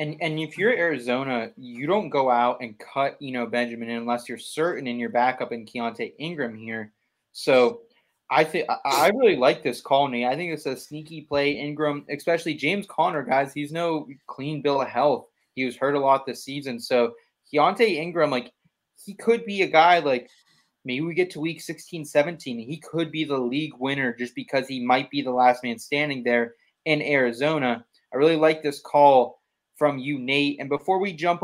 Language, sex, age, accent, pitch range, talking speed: English, male, 20-39, American, 125-155 Hz, 195 wpm